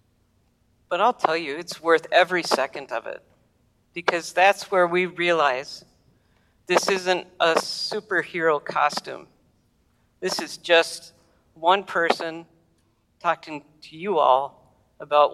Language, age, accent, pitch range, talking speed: English, 50-69, American, 130-175 Hz, 115 wpm